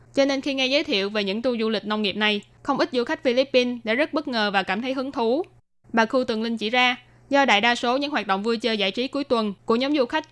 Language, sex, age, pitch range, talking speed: Vietnamese, female, 10-29, 215-255 Hz, 295 wpm